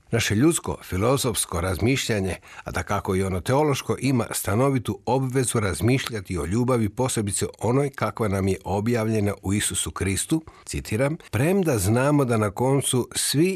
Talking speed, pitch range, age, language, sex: 140 wpm, 95-125 Hz, 60-79, Croatian, male